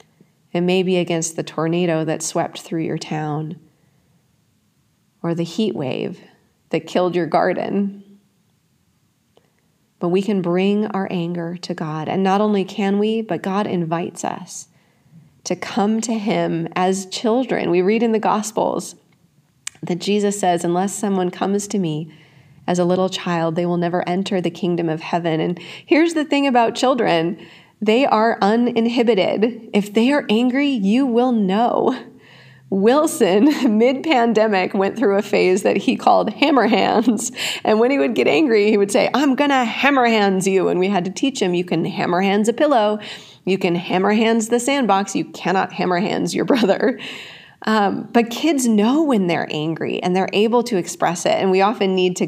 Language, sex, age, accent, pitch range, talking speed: English, female, 30-49, American, 175-225 Hz, 175 wpm